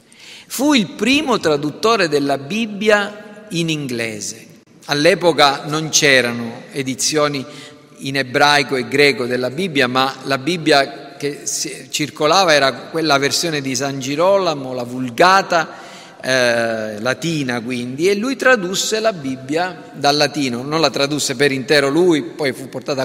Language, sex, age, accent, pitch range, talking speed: Italian, male, 40-59, native, 135-170 Hz, 130 wpm